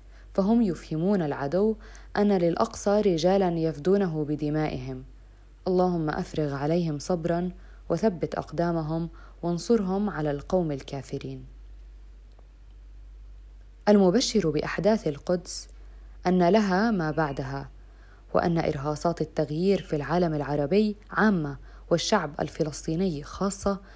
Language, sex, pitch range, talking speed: Arabic, female, 140-190 Hz, 90 wpm